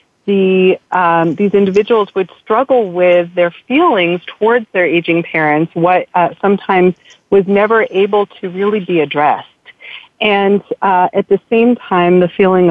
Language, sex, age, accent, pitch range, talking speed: English, female, 40-59, American, 165-210 Hz, 145 wpm